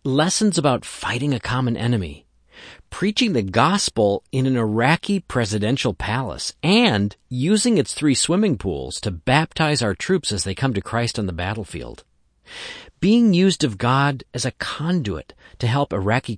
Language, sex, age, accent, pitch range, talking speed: English, male, 40-59, American, 100-145 Hz, 155 wpm